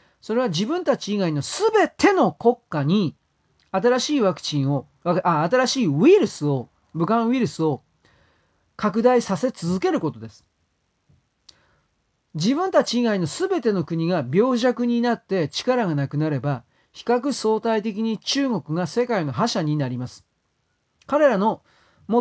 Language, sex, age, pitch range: Japanese, male, 40-59, 145-225 Hz